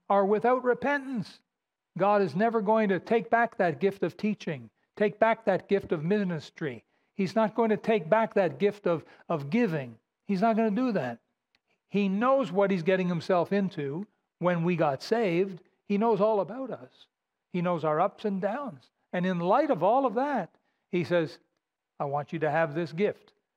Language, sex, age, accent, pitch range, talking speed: English, male, 60-79, American, 165-210 Hz, 190 wpm